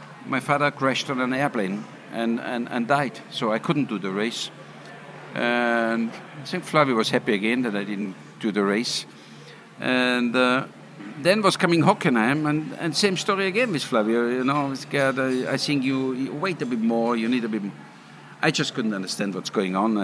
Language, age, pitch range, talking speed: English, 60-79, 120-150 Hz, 200 wpm